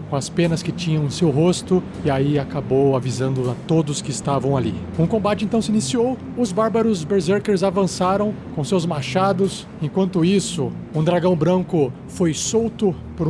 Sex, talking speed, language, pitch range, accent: male, 165 wpm, Portuguese, 160-200 Hz, Brazilian